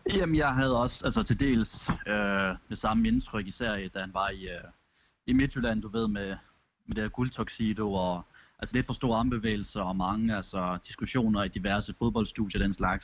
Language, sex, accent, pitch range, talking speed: Danish, male, native, 100-120 Hz, 195 wpm